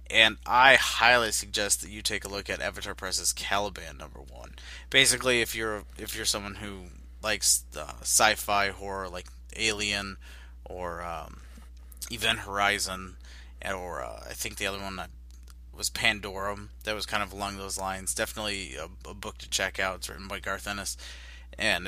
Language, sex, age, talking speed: English, male, 30-49, 170 wpm